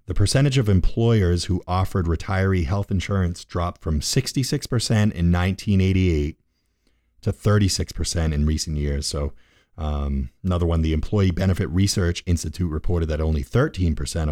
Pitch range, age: 85-110 Hz, 30-49